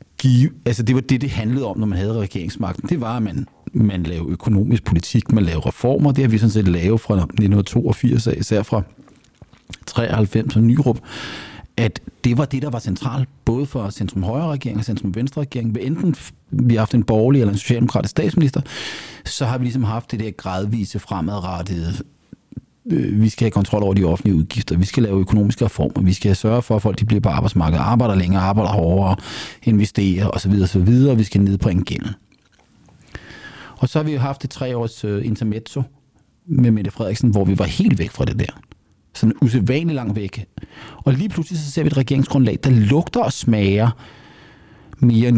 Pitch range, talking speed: 100-130 Hz, 185 wpm